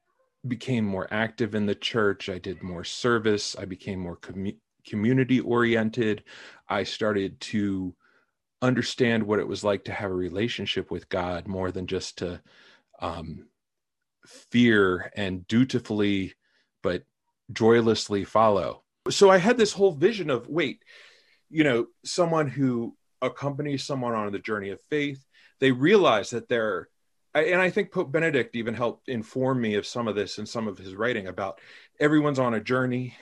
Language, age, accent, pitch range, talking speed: English, 30-49, American, 100-140 Hz, 155 wpm